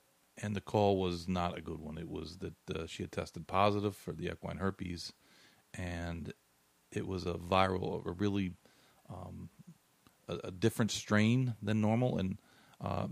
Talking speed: 165 wpm